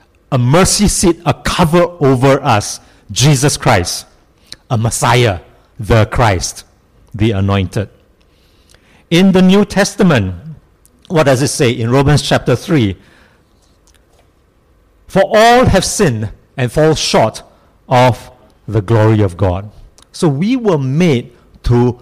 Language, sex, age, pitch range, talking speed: English, male, 60-79, 110-170 Hz, 120 wpm